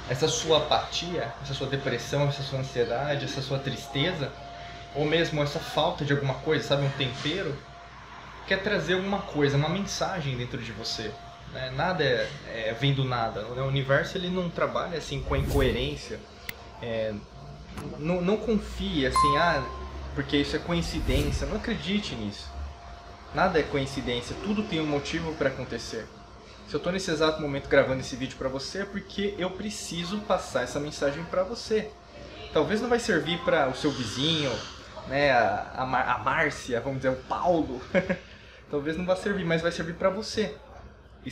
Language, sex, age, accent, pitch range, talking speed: Portuguese, male, 20-39, Brazilian, 135-175 Hz, 170 wpm